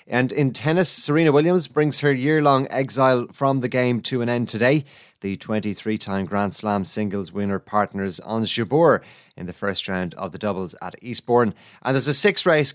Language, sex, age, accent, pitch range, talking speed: English, male, 30-49, Irish, 105-135 Hz, 175 wpm